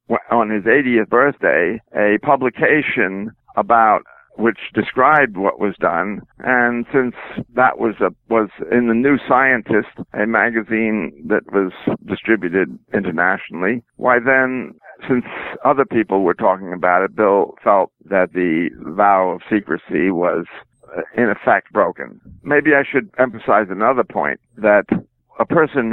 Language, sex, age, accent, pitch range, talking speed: English, male, 60-79, American, 105-125 Hz, 130 wpm